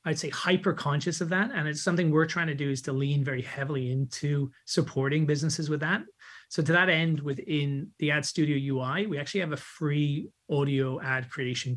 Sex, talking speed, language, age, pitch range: male, 205 wpm, English, 30-49, 135-160 Hz